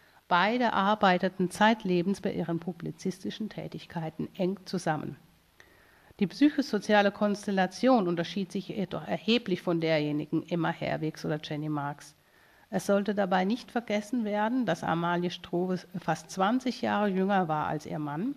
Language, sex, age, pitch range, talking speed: German, female, 50-69, 160-200 Hz, 130 wpm